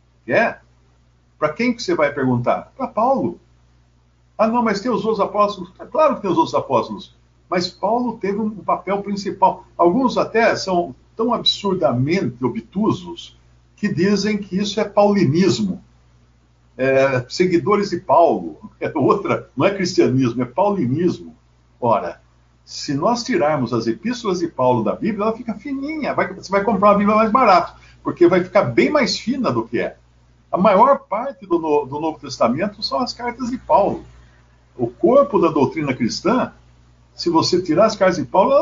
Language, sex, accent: Portuguese, male, Brazilian